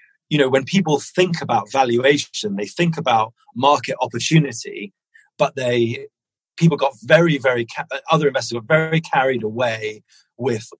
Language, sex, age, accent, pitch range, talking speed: English, male, 30-49, British, 115-160 Hz, 140 wpm